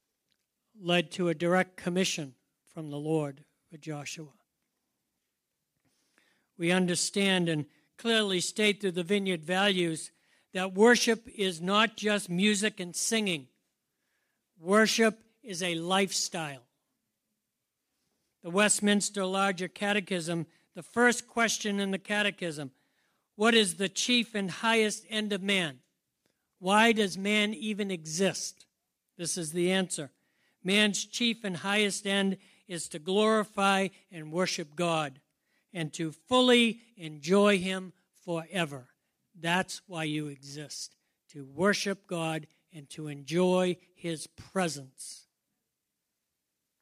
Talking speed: 115 wpm